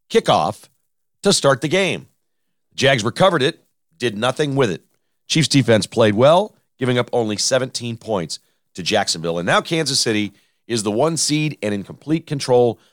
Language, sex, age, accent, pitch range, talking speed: English, male, 40-59, American, 115-155 Hz, 165 wpm